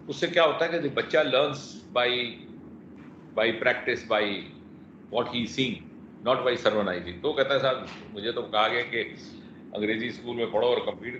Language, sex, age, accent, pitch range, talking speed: English, male, 50-69, Indian, 115-145 Hz, 105 wpm